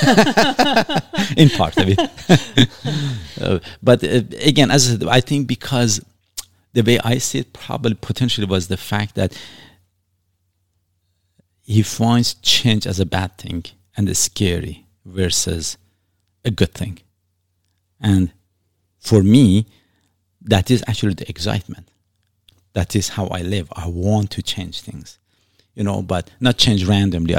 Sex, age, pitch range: male, 50-69, 95-115 Hz